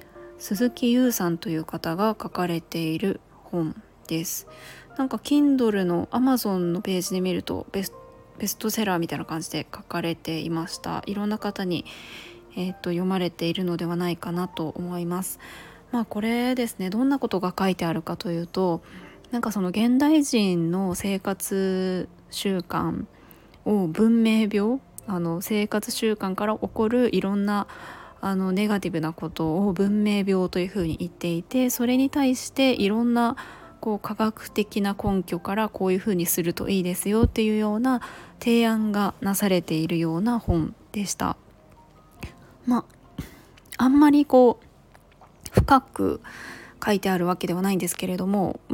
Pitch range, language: 175-220 Hz, Japanese